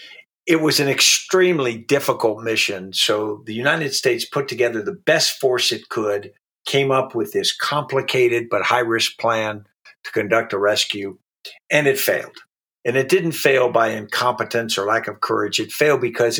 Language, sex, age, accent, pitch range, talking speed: English, male, 50-69, American, 110-160 Hz, 165 wpm